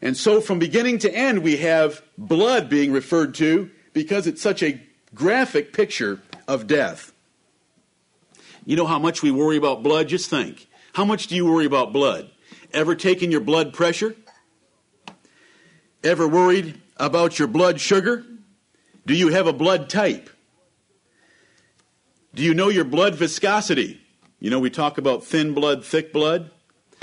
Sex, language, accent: male, English, American